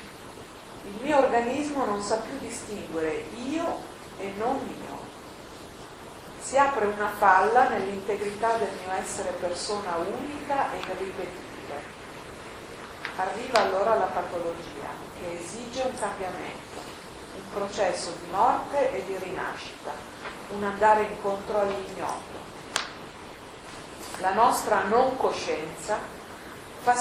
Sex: female